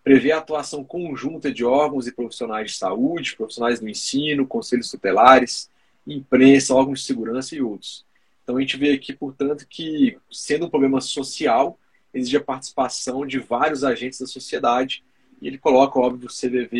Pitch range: 120-140 Hz